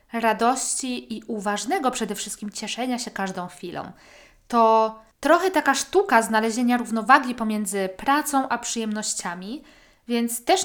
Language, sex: Polish, female